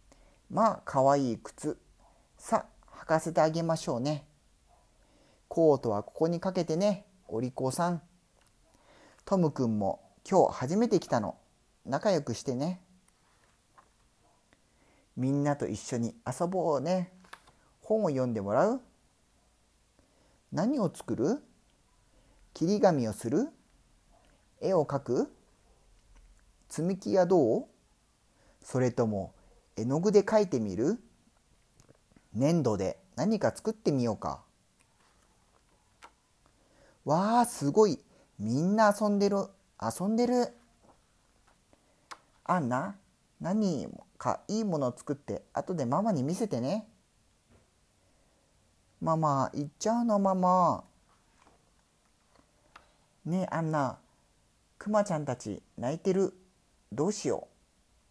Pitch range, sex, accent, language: 130-200 Hz, male, Japanese, Spanish